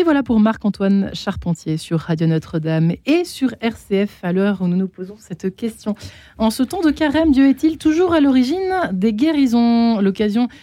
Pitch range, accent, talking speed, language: 165-220 Hz, French, 180 wpm, French